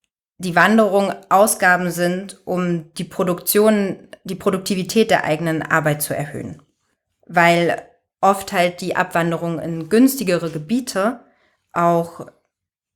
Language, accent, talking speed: German, German, 105 wpm